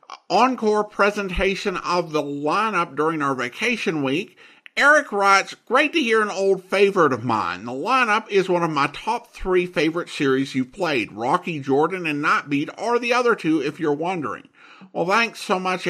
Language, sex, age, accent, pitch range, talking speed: English, male, 50-69, American, 140-215 Hz, 175 wpm